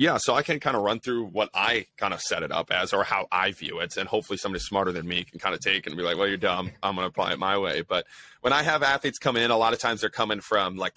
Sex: male